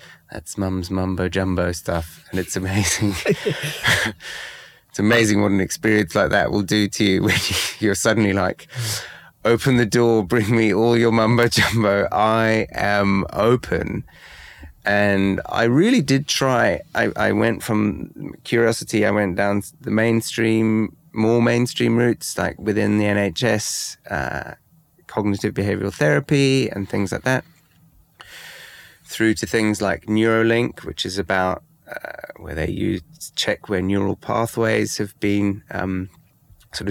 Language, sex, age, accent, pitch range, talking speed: English, male, 30-49, British, 95-115 Hz, 135 wpm